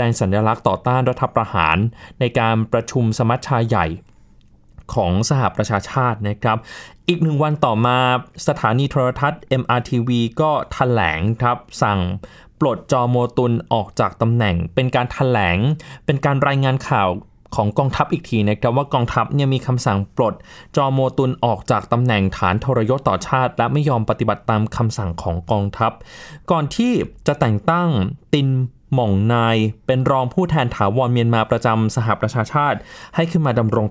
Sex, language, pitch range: male, Thai, 110-140 Hz